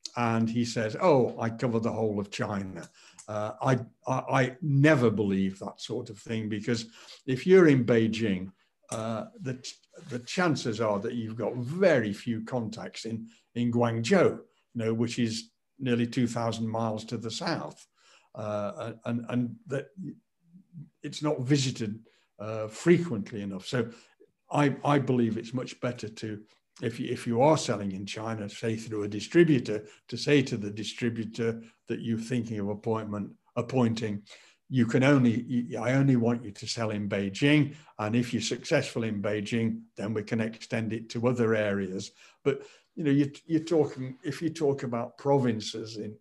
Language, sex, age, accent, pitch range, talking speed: English, male, 60-79, British, 110-130 Hz, 165 wpm